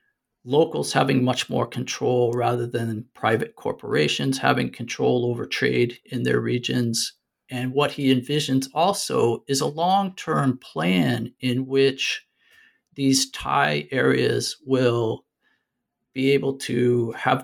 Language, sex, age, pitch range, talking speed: English, male, 50-69, 115-135 Hz, 120 wpm